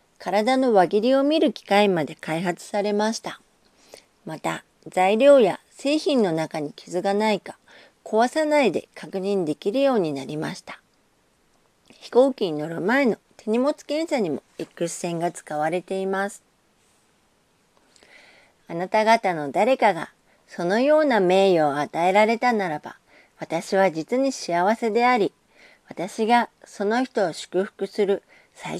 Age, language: 40-59, Japanese